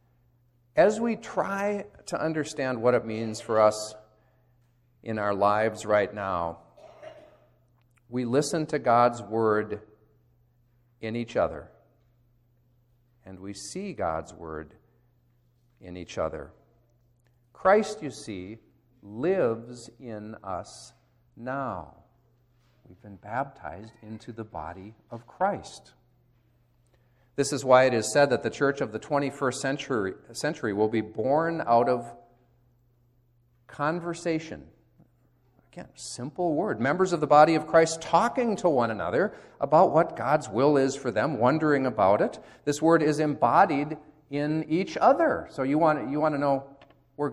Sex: male